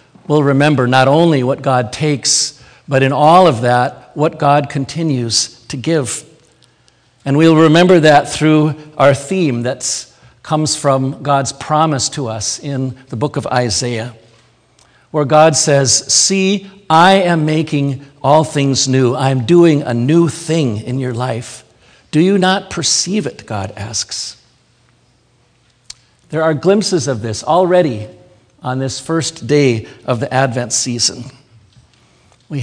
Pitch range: 120-150 Hz